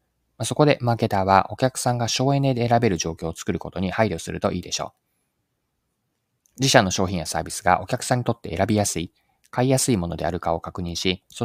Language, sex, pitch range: Japanese, male, 90-115 Hz